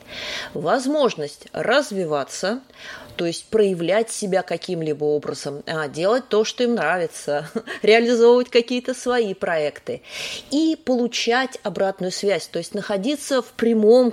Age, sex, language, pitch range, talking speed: 20-39, female, Russian, 175-240 Hz, 110 wpm